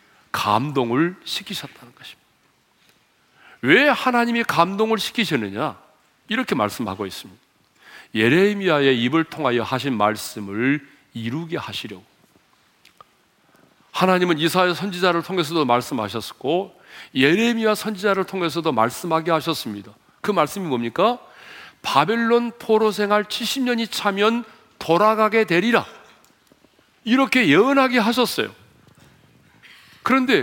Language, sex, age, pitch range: Korean, male, 40-59, 160-230 Hz